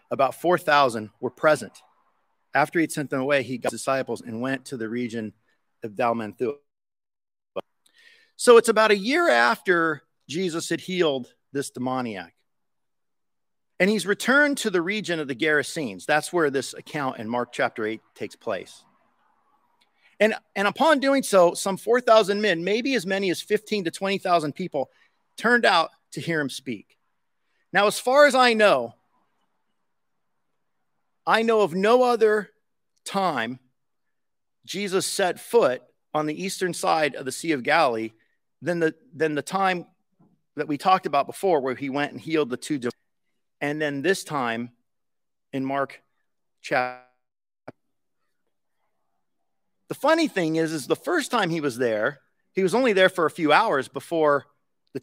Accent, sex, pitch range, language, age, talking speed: American, male, 135-195 Hz, English, 40-59, 155 wpm